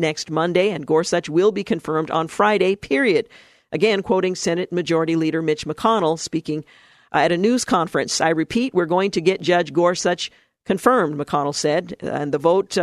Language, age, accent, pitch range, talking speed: English, 50-69, American, 160-195 Hz, 175 wpm